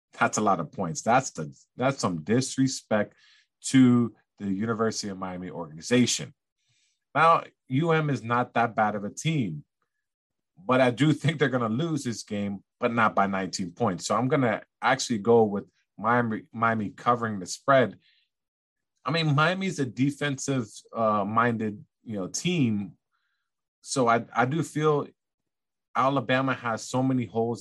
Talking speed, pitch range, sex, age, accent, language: 150 wpm, 105-130 Hz, male, 30-49, American, English